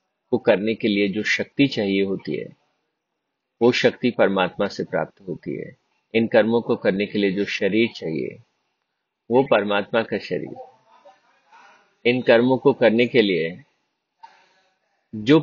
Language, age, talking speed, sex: Hindi, 50-69, 140 wpm, male